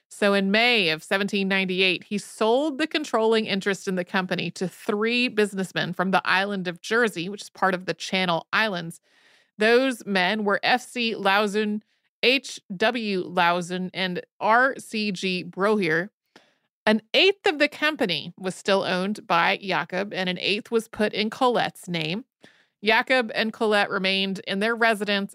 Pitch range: 185-225 Hz